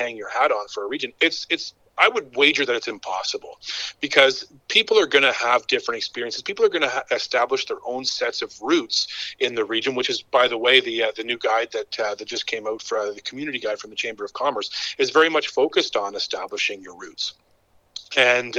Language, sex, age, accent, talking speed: English, male, 40-59, American, 235 wpm